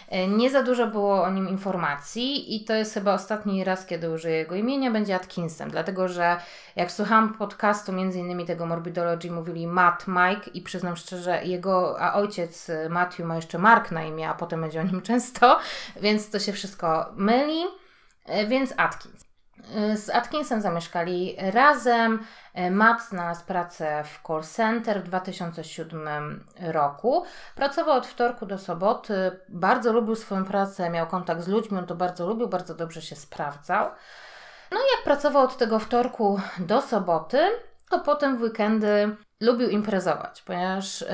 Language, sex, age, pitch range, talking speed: Polish, female, 20-39, 175-225 Hz, 155 wpm